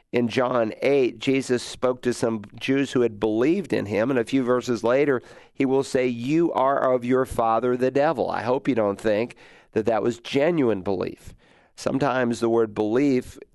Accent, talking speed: American, 185 wpm